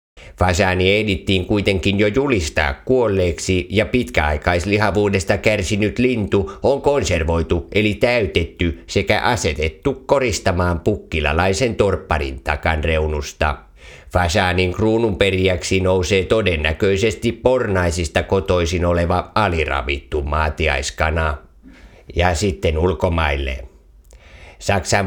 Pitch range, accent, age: 80-100 Hz, native, 50-69